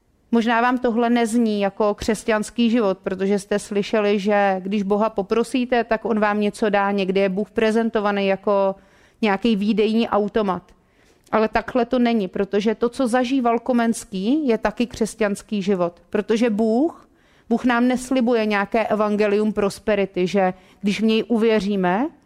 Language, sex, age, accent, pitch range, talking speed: Czech, female, 30-49, native, 200-225 Hz, 145 wpm